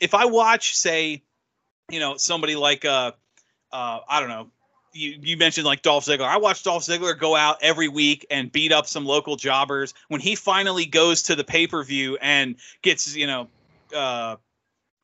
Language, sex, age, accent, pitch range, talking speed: English, male, 30-49, American, 145-180 Hz, 185 wpm